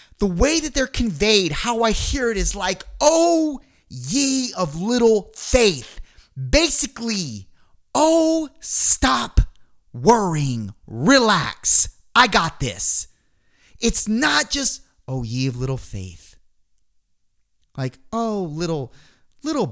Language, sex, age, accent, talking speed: English, male, 30-49, American, 110 wpm